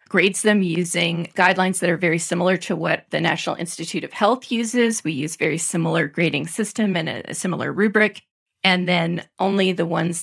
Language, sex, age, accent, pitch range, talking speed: English, female, 40-59, American, 165-200 Hz, 190 wpm